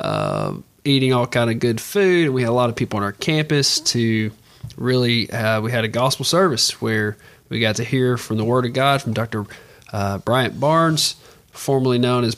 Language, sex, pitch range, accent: English, male, 110-140 Hz, American